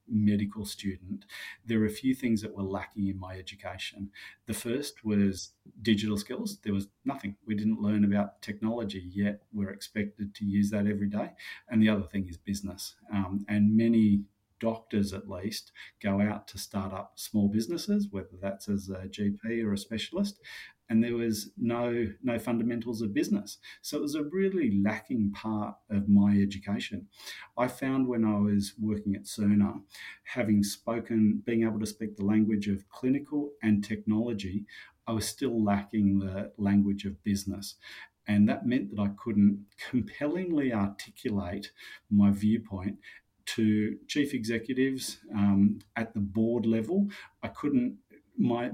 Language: English